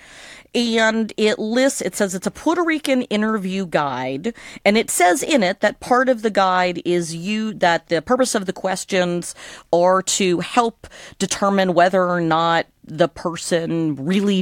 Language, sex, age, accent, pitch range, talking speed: English, female, 40-59, American, 160-195 Hz, 160 wpm